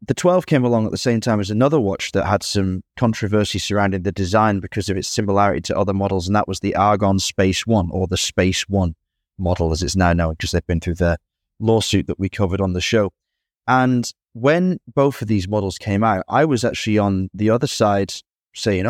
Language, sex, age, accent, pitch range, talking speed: English, male, 20-39, British, 100-130 Hz, 220 wpm